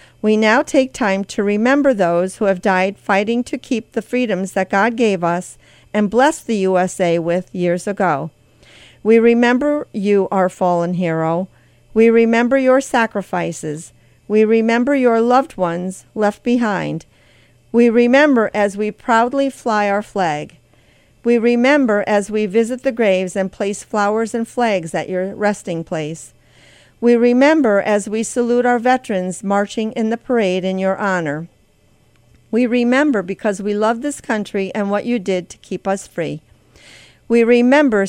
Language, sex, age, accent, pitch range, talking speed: English, female, 50-69, American, 190-235 Hz, 155 wpm